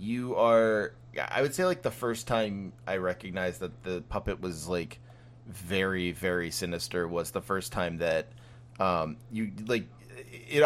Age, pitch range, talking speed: 30-49, 85-120 Hz, 160 wpm